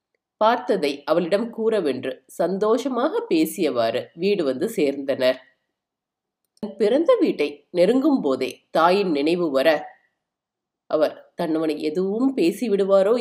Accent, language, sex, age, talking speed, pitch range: native, Tamil, female, 30-49, 95 wpm, 150-225 Hz